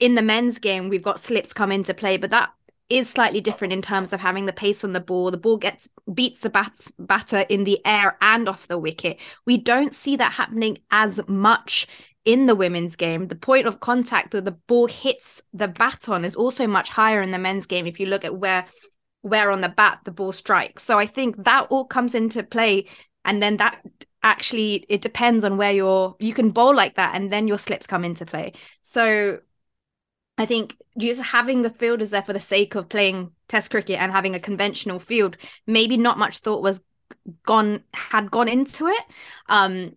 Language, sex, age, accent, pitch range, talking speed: English, female, 20-39, British, 195-235 Hz, 210 wpm